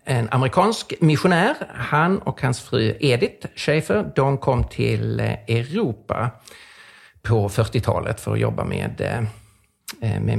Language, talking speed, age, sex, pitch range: Swedish, 115 wpm, 50-69, male, 110-140 Hz